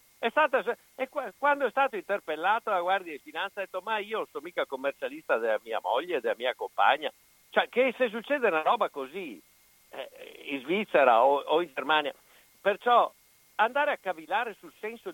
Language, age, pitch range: Italian, 60-79, 180-290 Hz